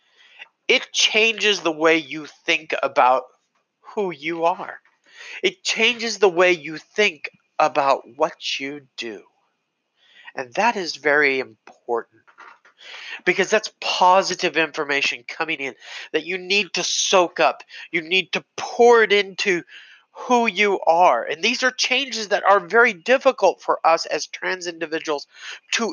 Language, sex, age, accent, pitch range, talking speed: English, male, 40-59, American, 175-240 Hz, 140 wpm